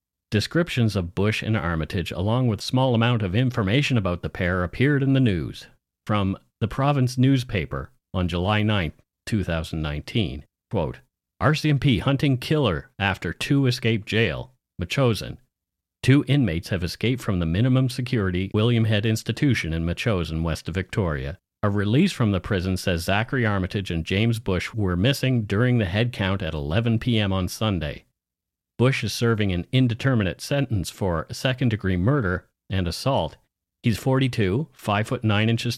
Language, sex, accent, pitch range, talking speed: English, male, American, 90-125 Hz, 150 wpm